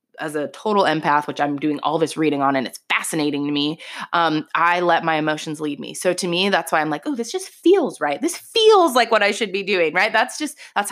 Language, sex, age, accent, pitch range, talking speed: English, female, 20-39, American, 155-200 Hz, 260 wpm